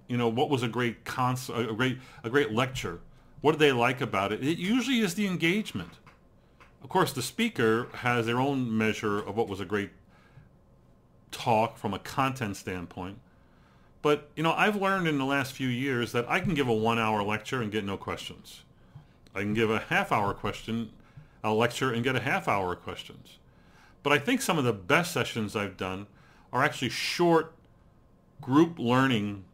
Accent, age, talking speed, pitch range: American, 40-59, 190 wpm, 110-145 Hz